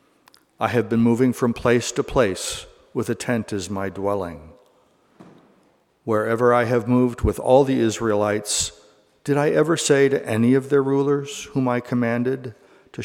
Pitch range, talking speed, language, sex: 105-125 Hz, 160 wpm, English, male